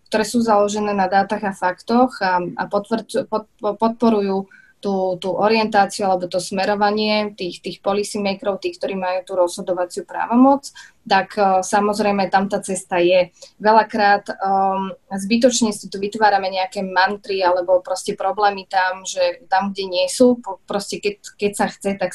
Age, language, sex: 20-39, Slovak, female